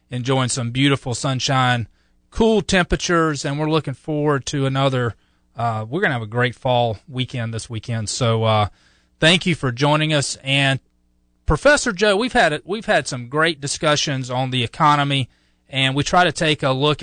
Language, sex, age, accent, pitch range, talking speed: English, male, 30-49, American, 120-150 Hz, 175 wpm